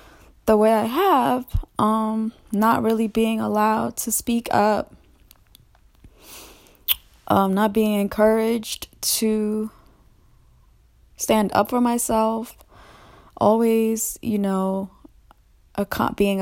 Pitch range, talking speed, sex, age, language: 185-225 Hz, 95 wpm, female, 20-39, Amharic